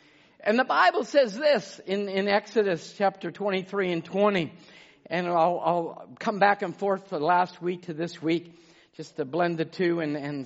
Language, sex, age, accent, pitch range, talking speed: English, male, 50-69, American, 180-250 Hz, 185 wpm